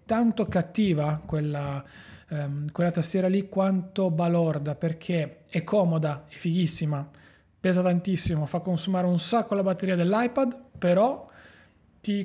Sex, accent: male, native